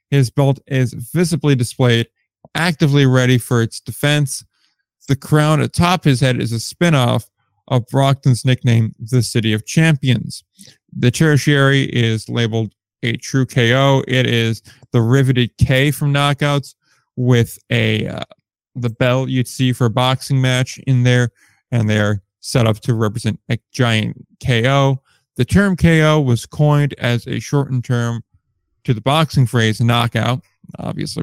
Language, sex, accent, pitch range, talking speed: English, male, American, 120-140 Hz, 145 wpm